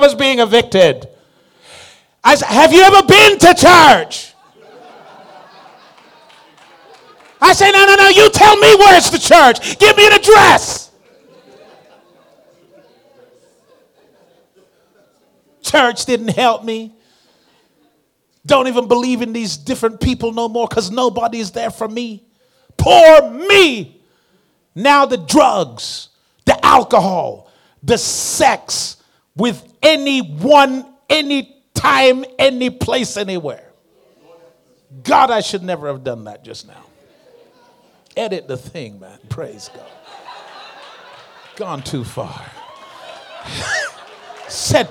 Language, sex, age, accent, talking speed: English, male, 40-59, American, 110 wpm